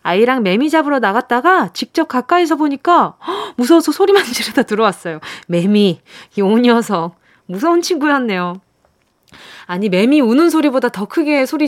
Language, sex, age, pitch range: Korean, female, 20-39, 205-330 Hz